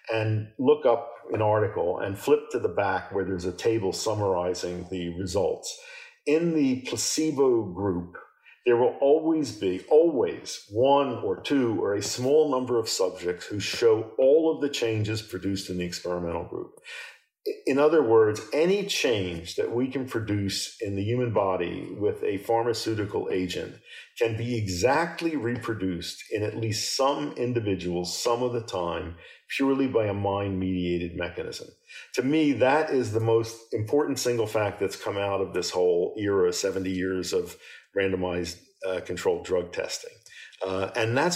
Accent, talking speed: American, 155 wpm